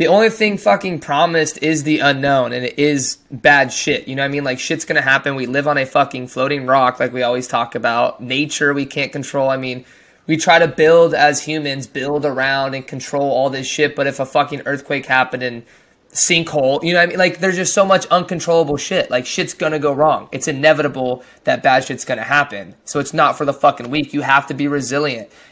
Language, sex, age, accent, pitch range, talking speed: English, male, 20-39, American, 135-155 Hz, 235 wpm